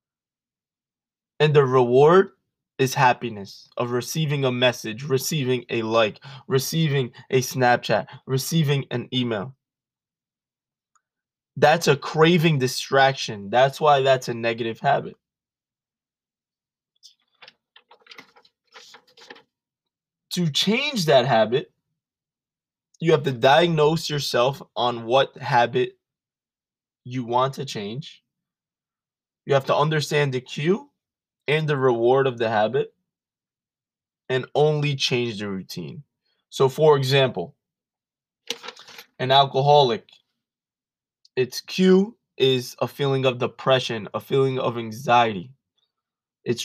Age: 20-39